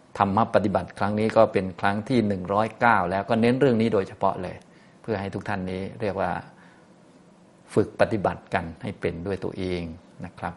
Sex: male